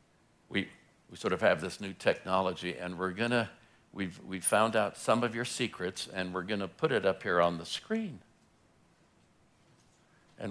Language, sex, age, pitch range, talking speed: English, male, 60-79, 105-130 Hz, 165 wpm